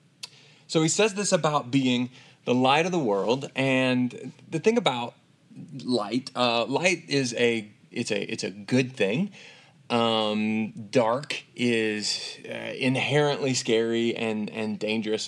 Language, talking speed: English, 140 wpm